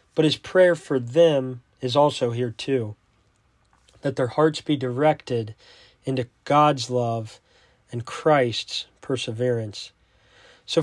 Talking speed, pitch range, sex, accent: 115 wpm, 120-155 Hz, male, American